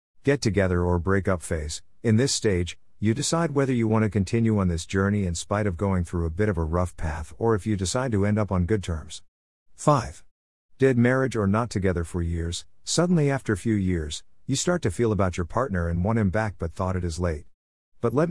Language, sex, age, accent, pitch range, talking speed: English, male, 50-69, American, 90-115 Hz, 225 wpm